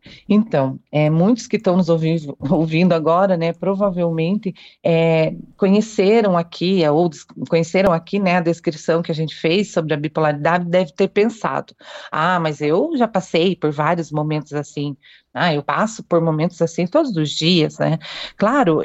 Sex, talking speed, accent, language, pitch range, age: female, 160 wpm, Brazilian, Portuguese, 165-205 Hz, 40-59